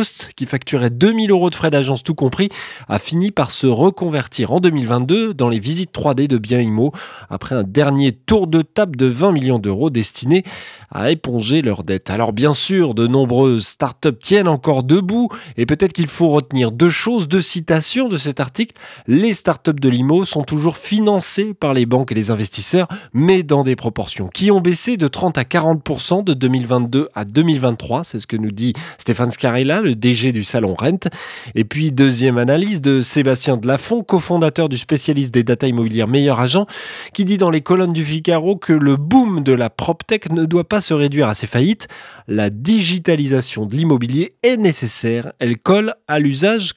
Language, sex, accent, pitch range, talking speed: French, male, French, 125-185 Hz, 185 wpm